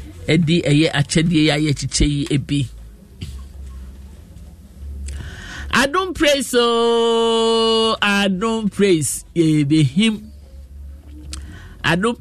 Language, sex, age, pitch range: English, male, 50-69, 140-200 Hz